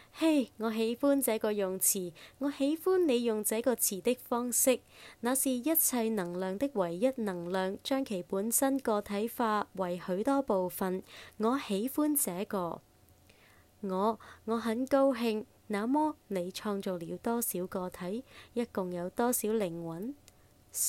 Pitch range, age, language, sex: 185-240 Hz, 20-39, Chinese, female